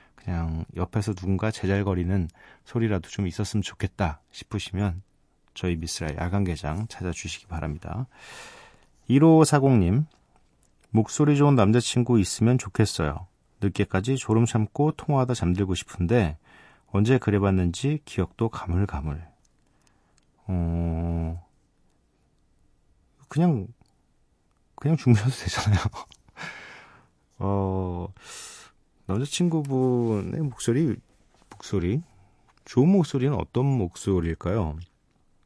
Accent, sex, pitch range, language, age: native, male, 90-125 Hz, Korean, 40-59